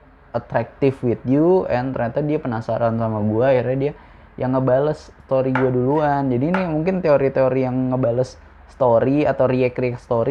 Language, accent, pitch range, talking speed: Indonesian, native, 110-130 Hz, 150 wpm